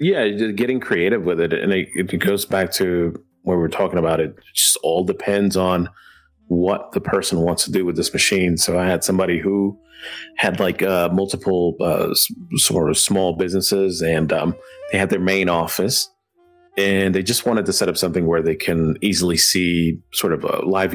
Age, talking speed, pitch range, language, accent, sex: 30-49, 200 wpm, 85-100 Hz, English, American, male